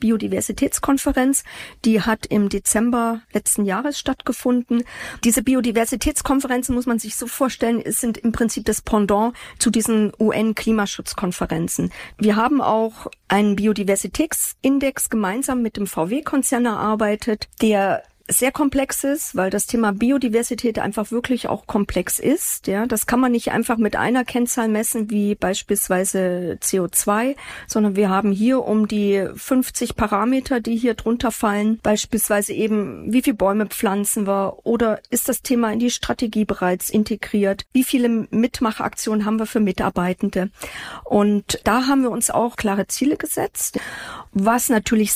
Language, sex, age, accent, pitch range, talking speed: German, female, 40-59, German, 205-250 Hz, 140 wpm